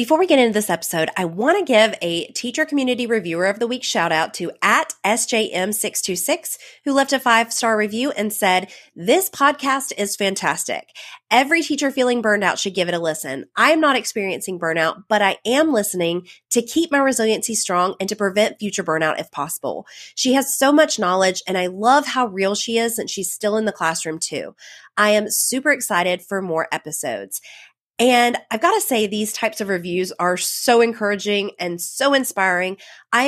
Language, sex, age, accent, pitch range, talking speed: English, female, 30-49, American, 185-255 Hz, 195 wpm